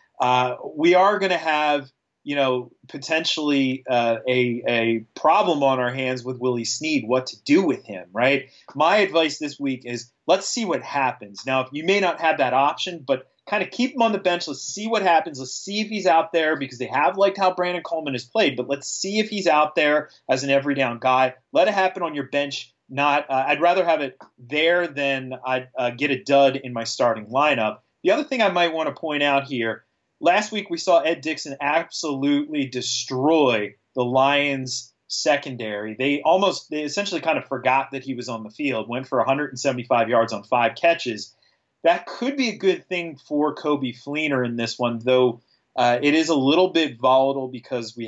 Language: English